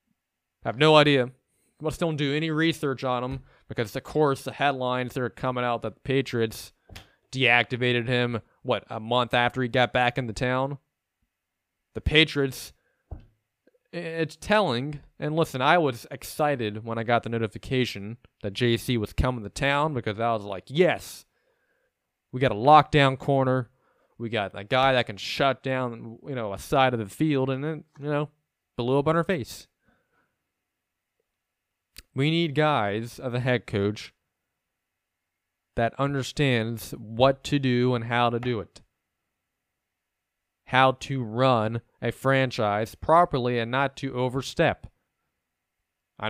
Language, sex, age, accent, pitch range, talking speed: English, male, 20-39, American, 120-145 Hz, 150 wpm